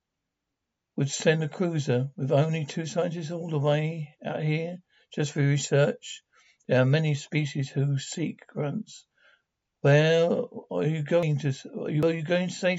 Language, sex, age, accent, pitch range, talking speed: English, male, 60-79, British, 140-170 Hz, 165 wpm